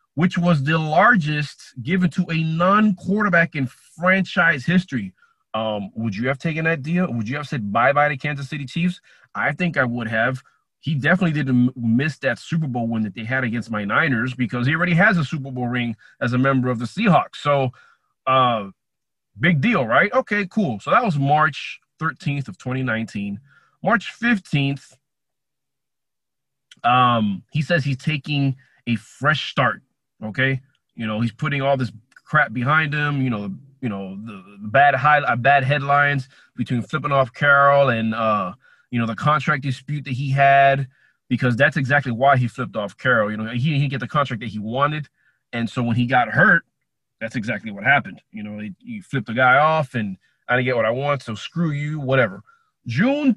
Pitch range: 120-160 Hz